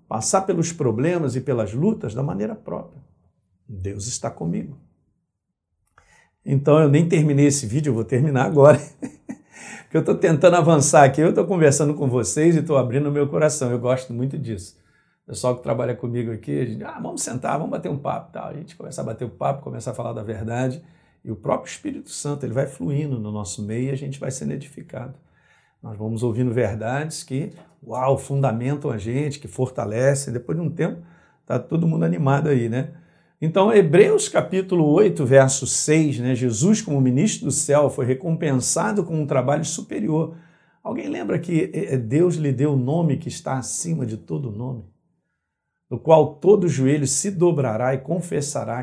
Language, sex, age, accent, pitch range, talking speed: Portuguese, male, 50-69, Brazilian, 125-160 Hz, 185 wpm